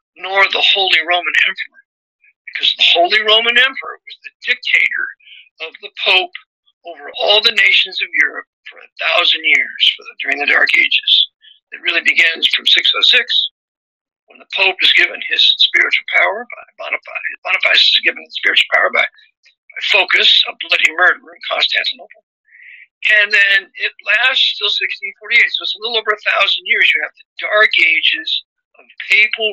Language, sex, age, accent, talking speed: English, male, 50-69, American, 165 wpm